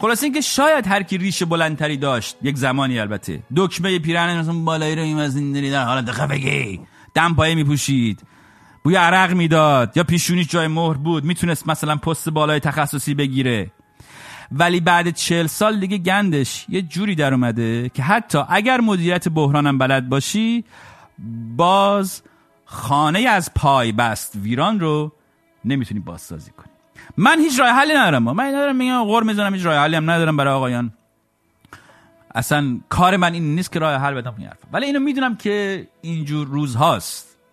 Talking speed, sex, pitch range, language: 165 wpm, male, 130-190 Hz, English